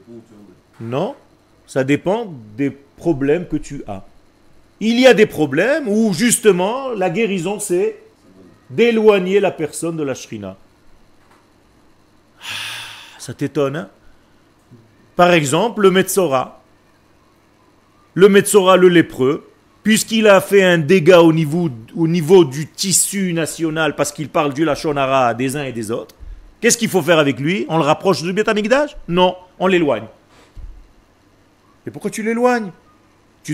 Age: 40-59